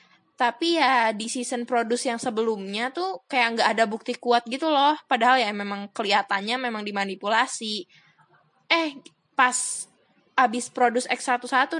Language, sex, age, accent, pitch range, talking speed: Indonesian, female, 20-39, native, 235-270 Hz, 135 wpm